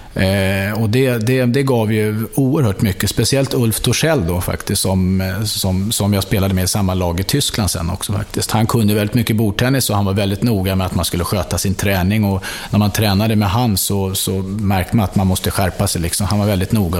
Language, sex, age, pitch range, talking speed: English, male, 30-49, 95-110 Hz, 230 wpm